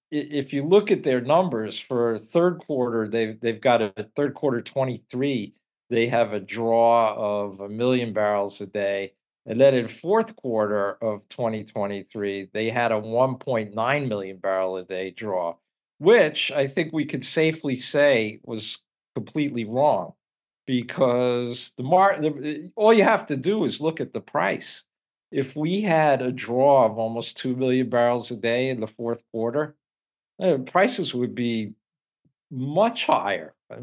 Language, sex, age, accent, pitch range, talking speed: English, male, 50-69, American, 110-135 Hz, 155 wpm